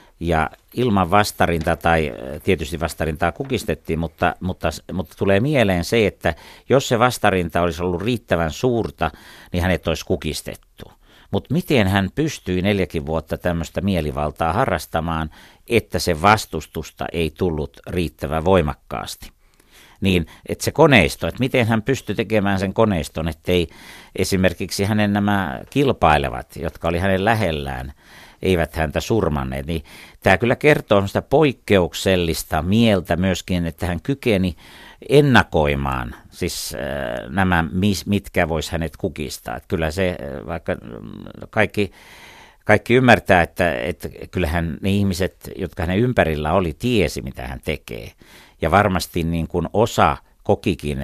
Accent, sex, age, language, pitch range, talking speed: native, male, 60-79, Finnish, 80-100 Hz, 125 wpm